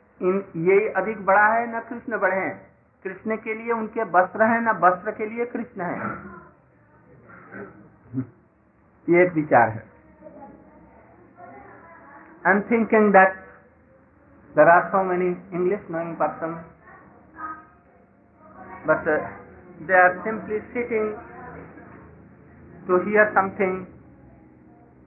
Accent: native